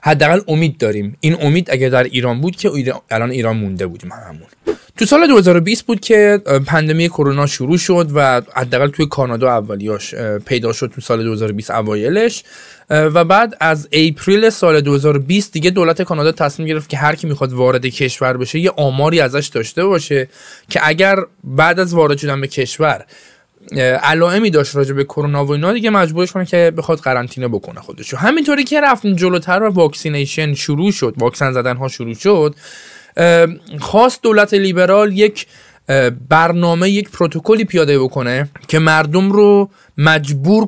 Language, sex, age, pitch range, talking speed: Persian, male, 20-39, 135-185 Hz, 155 wpm